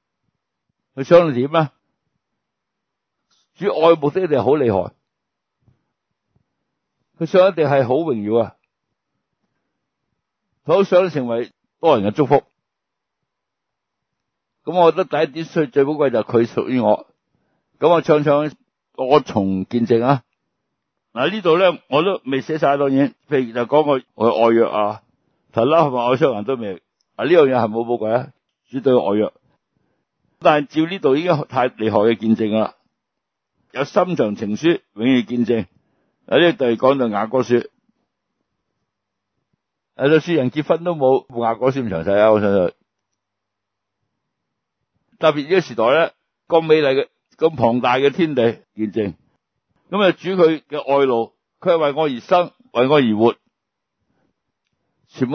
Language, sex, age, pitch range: Chinese, male, 60-79, 115-160 Hz